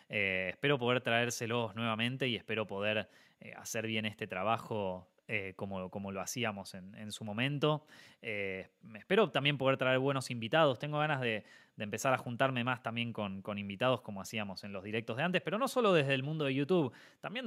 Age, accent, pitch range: 20-39, Argentinian, 105-145 Hz